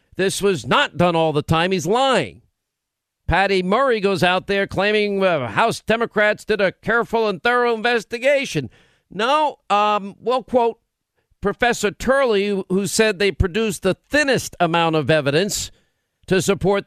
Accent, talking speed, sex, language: American, 145 wpm, male, English